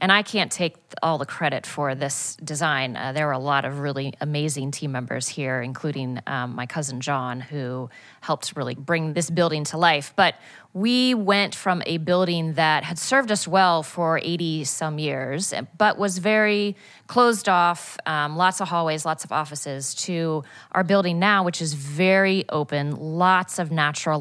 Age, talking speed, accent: 30-49, 175 wpm, American